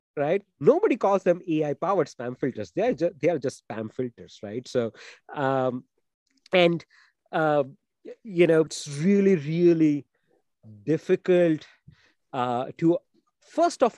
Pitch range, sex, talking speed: 130-185 Hz, male, 135 wpm